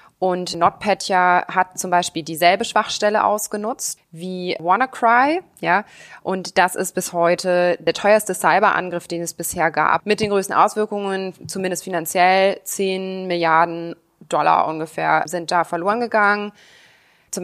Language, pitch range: German, 170-195 Hz